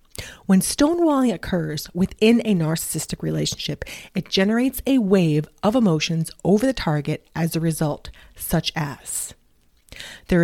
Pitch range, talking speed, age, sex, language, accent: 155-205 Hz, 125 wpm, 30-49, female, English, American